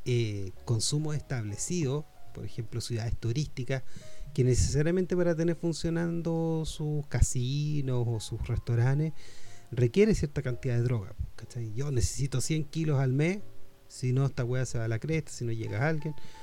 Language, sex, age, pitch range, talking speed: Spanish, male, 30-49, 115-150 Hz, 155 wpm